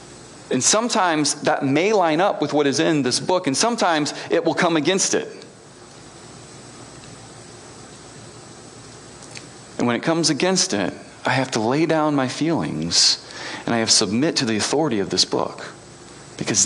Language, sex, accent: English, male, American